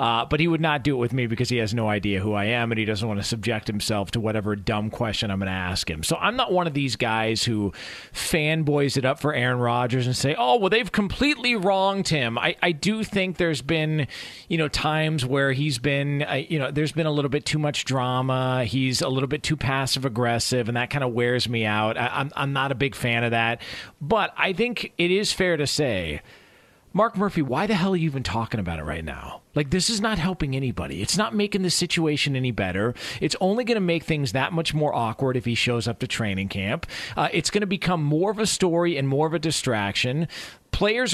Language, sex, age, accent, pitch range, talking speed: English, male, 40-59, American, 125-205 Hz, 240 wpm